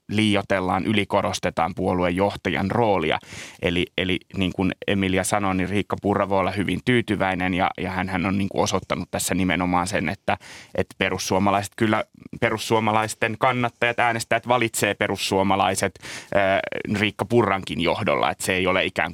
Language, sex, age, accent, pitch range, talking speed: Finnish, male, 30-49, native, 95-115 Hz, 140 wpm